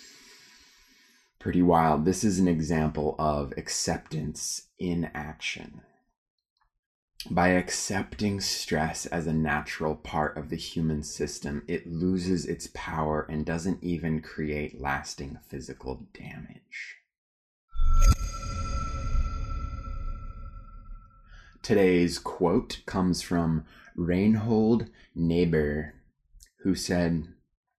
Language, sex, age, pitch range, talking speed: English, male, 20-39, 75-95 Hz, 85 wpm